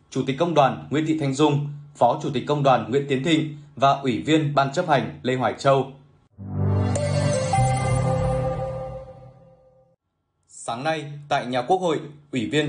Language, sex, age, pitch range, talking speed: Vietnamese, male, 20-39, 130-150 Hz, 155 wpm